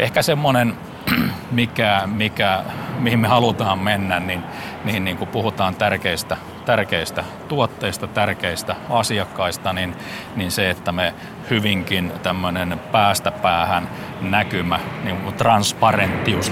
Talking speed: 105 wpm